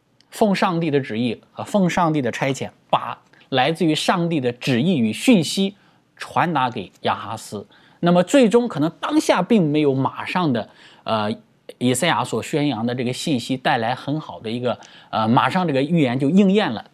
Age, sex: 20-39, male